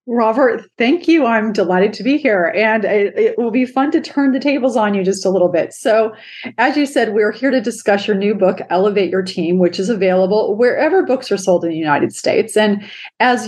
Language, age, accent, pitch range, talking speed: English, 30-49, American, 190-255 Hz, 225 wpm